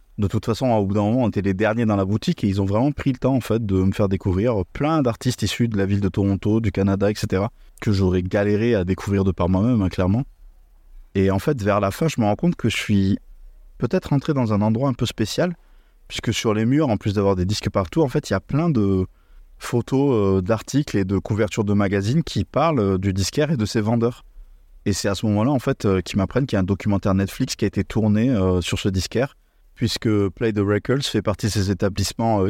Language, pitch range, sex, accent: French, 100-115 Hz, male, French